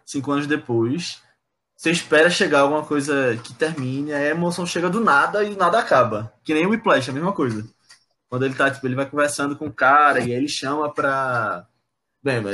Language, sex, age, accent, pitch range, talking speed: Portuguese, male, 20-39, Brazilian, 125-155 Hz, 205 wpm